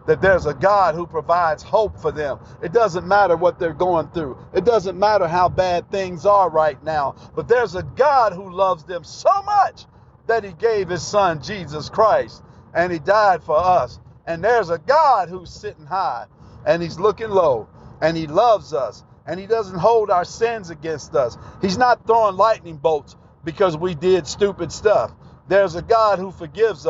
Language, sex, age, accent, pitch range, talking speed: English, male, 50-69, American, 160-215 Hz, 185 wpm